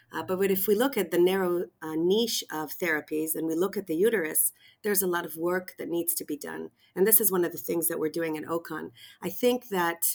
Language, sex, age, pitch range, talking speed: English, female, 40-59, 165-190 Hz, 255 wpm